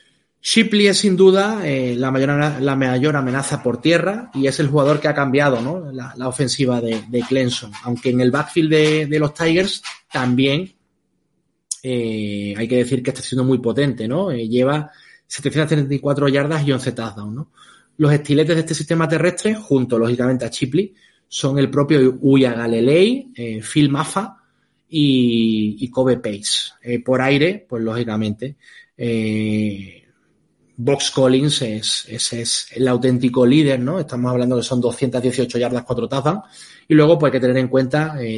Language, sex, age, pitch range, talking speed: Spanish, male, 30-49, 125-155 Hz, 165 wpm